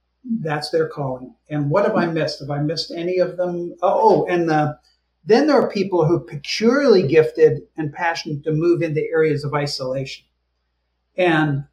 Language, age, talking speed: English, 60-79, 175 wpm